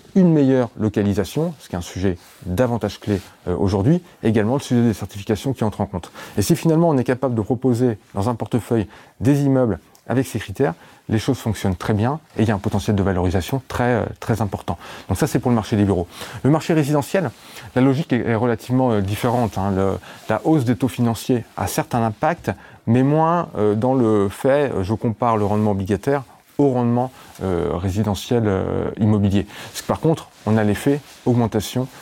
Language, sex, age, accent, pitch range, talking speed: French, male, 30-49, French, 100-125 Hz, 190 wpm